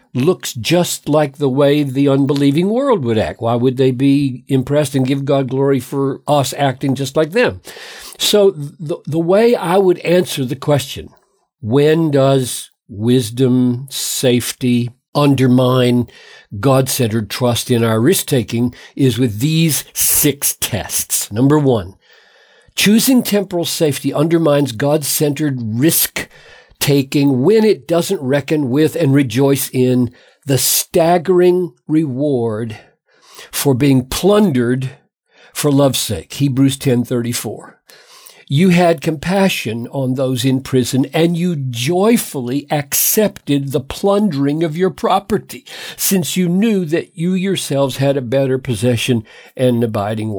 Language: English